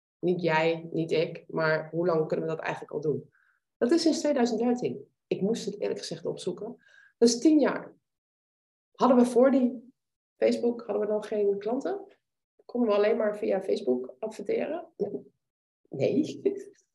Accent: Dutch